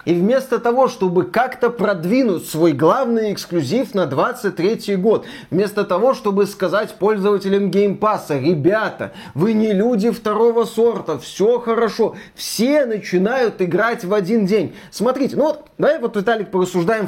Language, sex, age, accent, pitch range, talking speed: Russian, male, 30-49, native, 180-225 Hz, 135 wpm